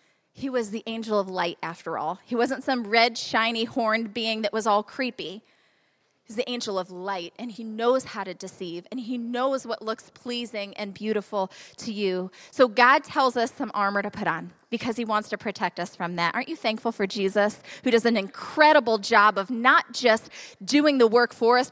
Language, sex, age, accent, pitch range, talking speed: English, female, 20-39, American, 220-280 Hz, 205 wpm